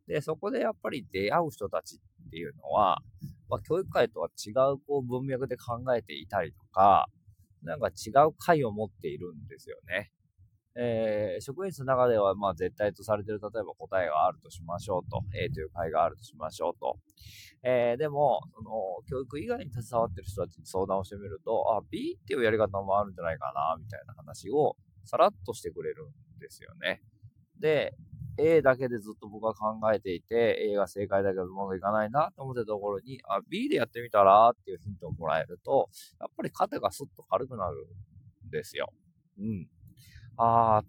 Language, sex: Japanese, male